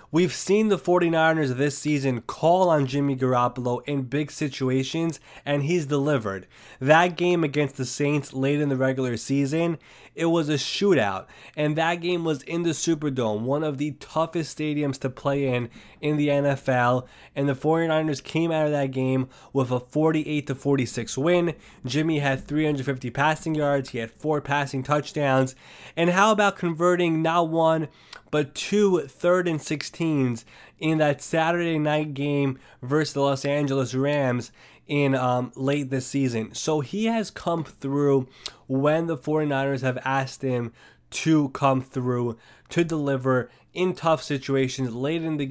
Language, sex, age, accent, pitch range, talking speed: English, male, 20-39, American, 135-160 Hz, 155 wpm